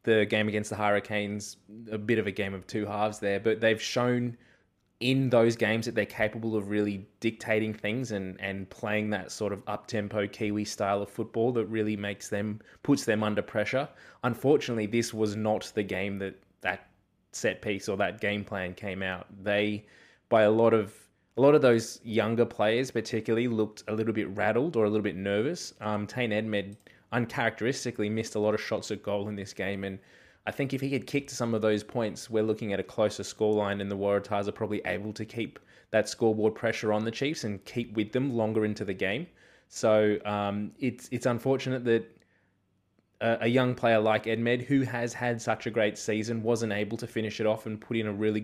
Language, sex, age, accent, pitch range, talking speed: English, male, 20-39, Australian, 105-115 Hz, 210 wpm